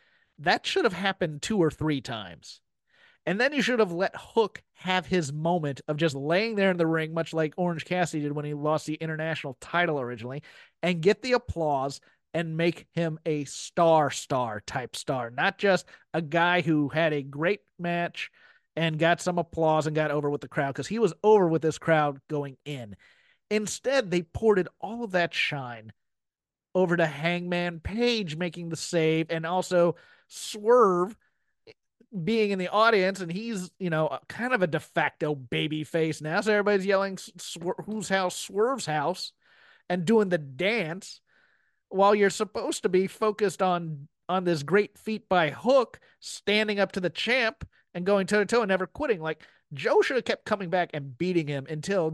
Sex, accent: male, American